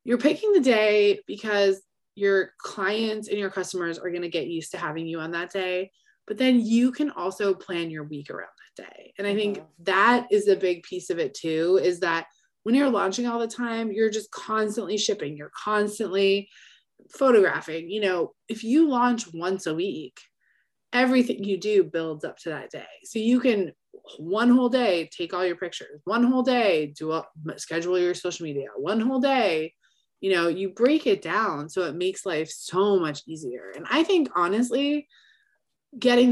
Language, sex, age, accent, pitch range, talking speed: English, female, 20-39, American, 180-245 Hz, 185 wpm